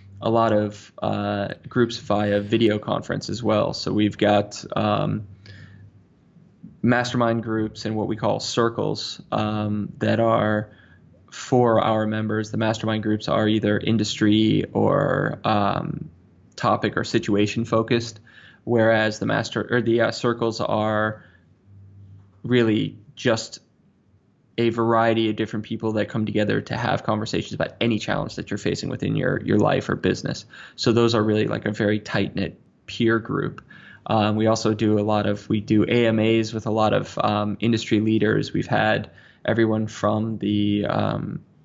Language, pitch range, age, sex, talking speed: English, 105-115 Hz, 20-39, male, 150 wpm